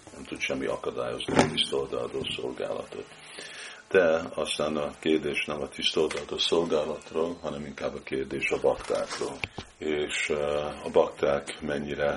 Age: 50-69